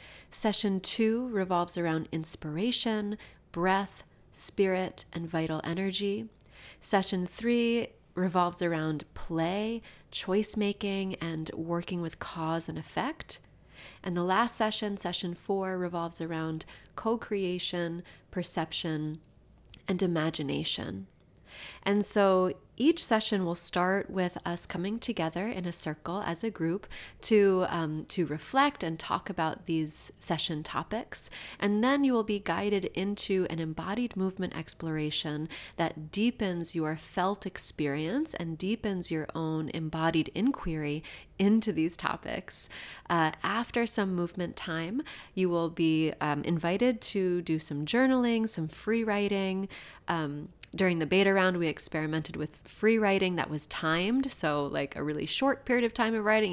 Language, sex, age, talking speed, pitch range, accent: English, female, 30-49, 135 wpm, 160-205 Hz, American